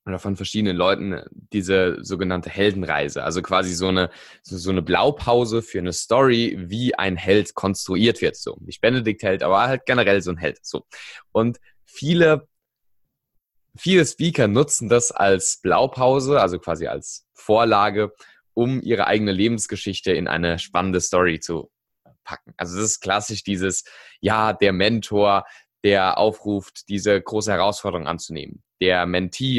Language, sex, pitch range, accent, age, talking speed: German, male, 90-115 Hz, German, 20-39, 140 wpm